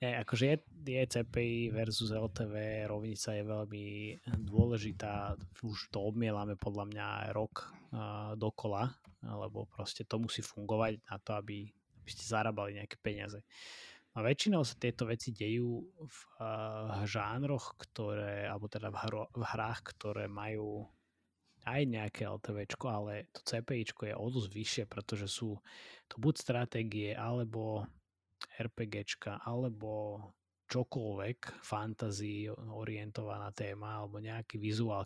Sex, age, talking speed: male, 20-39, 125 wpm